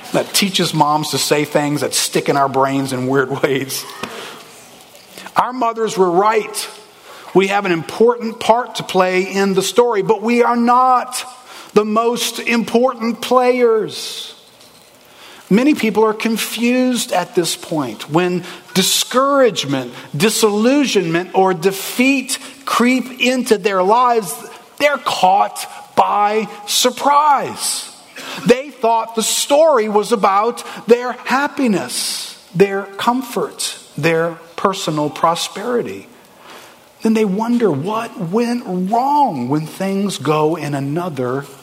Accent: American